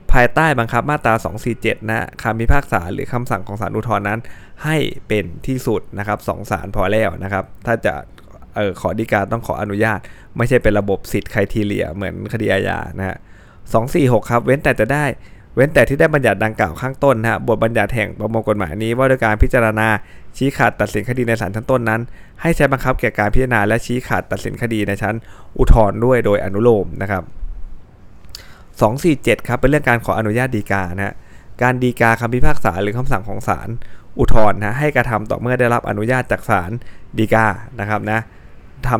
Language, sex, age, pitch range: Thai, male, 20-39, 105-125 Hz